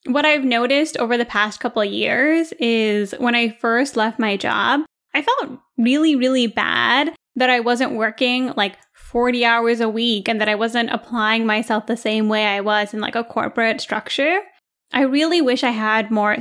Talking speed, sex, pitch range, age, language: 190 wpm, female, 220-265 Hz, 10-29, English